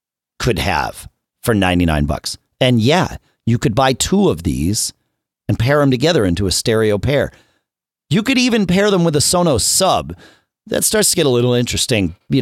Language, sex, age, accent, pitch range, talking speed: English, male, 40-59, American, 90-145 Hz, 185 wpm